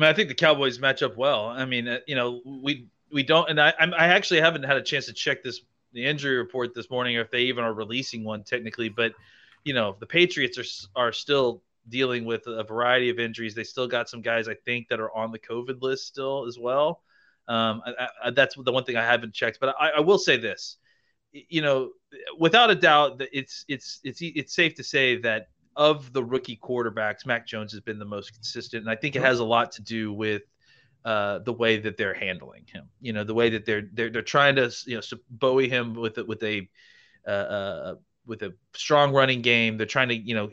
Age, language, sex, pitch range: 30-49, English, male, 115-140 Hz